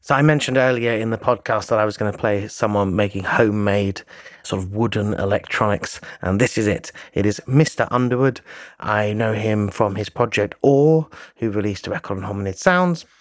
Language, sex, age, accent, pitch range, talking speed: English, male, 30-49, British, 105-135 Hz, 190 wpm